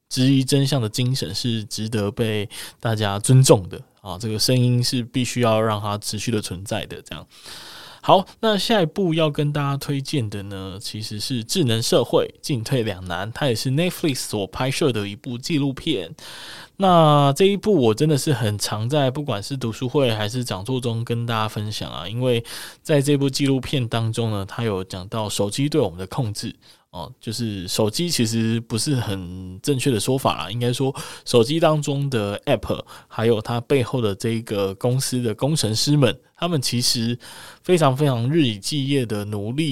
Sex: male